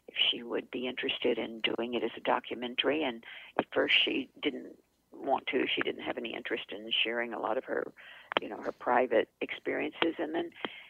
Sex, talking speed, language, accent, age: female, 200 wpm, English, American, 50-69